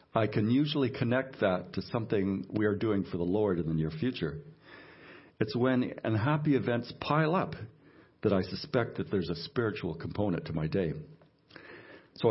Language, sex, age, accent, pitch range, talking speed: English, male, 60-79, American, 100-135 Hz, 170 wpm